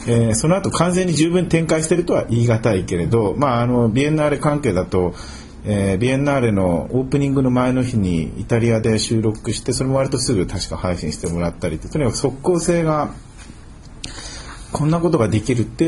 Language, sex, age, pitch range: Japanese, male, 40-59, 100-150 Hz